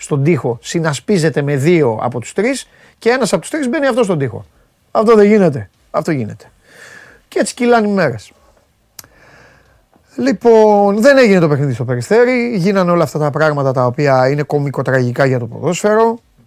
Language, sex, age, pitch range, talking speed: Greek, male, 30-49, 135-185 Hz, 170 wpm